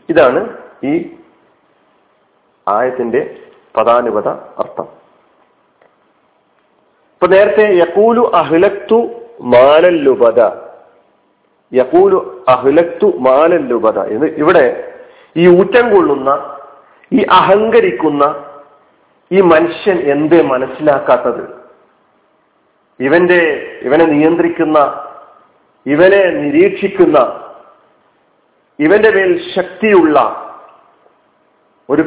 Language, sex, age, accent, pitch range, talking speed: Malayalam, male, 40-59, native, 155-210 Hz, 60 wpm